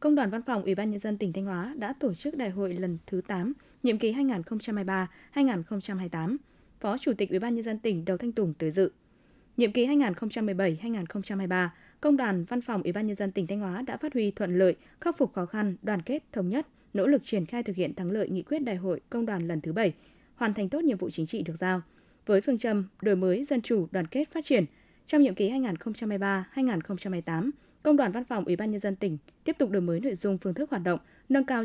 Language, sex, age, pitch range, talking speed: Vietnamese, female, 20-39, 185-245 Hz, 235 wpm